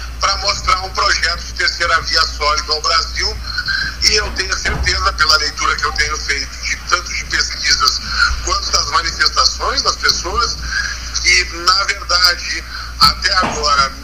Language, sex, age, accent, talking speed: Portuguese, male, 50-69, Brazilian, 140 wpm